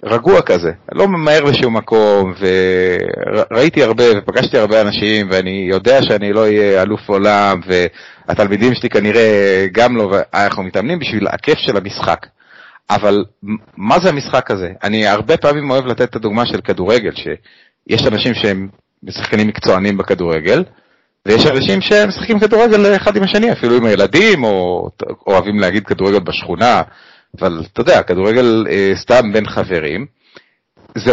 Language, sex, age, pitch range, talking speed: English, male, 30-49, 95-135 Hz, 145 wpm